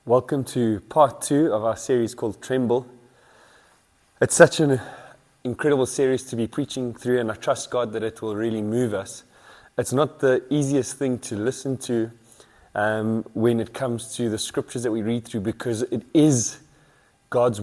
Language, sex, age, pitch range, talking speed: English, male, 20-39, 115-135 Hz, 175 wpm